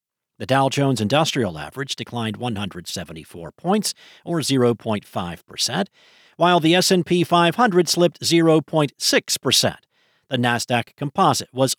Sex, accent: male, American